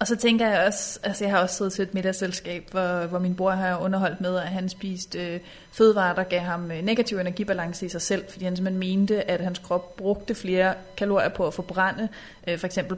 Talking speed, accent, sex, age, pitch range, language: 230 wpm, native, female, 30-49, 185-205 Hz, Danish